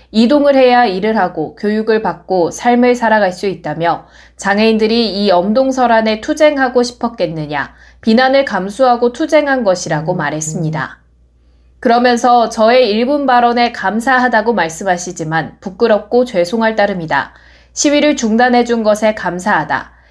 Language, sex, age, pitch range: Korean, female, 20-39, 185-250 Hz